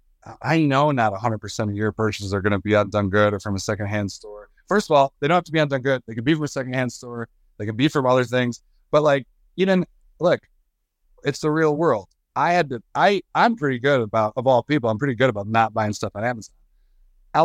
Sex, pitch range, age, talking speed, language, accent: male, 115-175 Hz, 30-49, 255 wpm, English, American